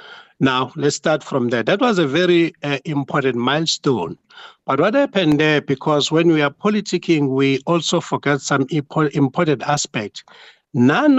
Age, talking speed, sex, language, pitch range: 60-79, 150 wpm, male, English, 140-175 Hz